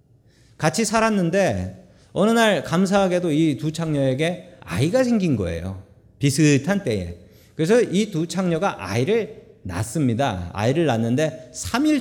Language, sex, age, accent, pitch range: Korean, male, 40-59, native, 120-185 Hz